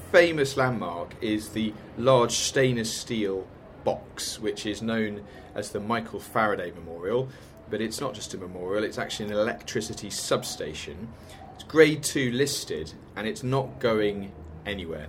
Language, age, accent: English, 30-49, British